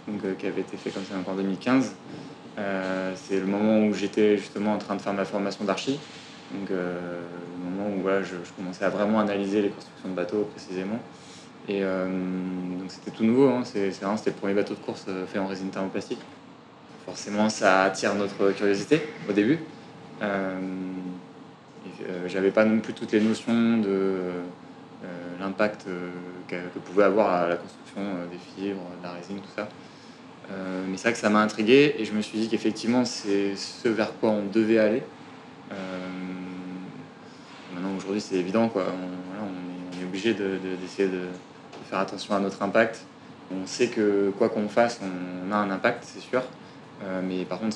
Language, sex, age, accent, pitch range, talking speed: French, male, 20-39, French, 90-105 Hz, 185 wpm